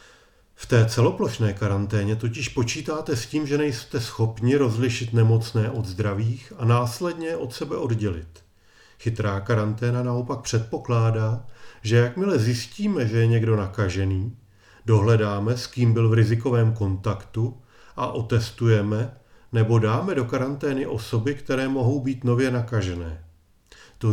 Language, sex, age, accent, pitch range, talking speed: Czech, male, 40-59, native, 105-130 Hz, 125 wpm